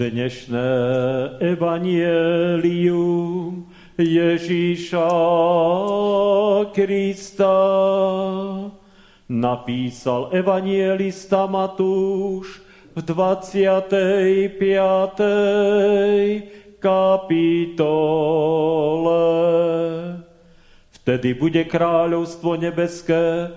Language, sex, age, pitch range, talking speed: Slovak, male, 40-59, 170-195 Hz, 35 wpm